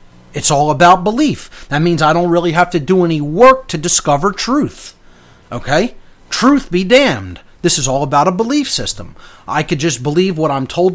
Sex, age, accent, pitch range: male, 30-49, American, 145-220 Hz